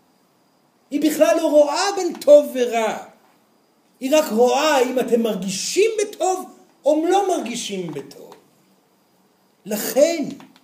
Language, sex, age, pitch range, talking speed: Hebrew, male, 50-69, 245-320 Hz, 105 wpm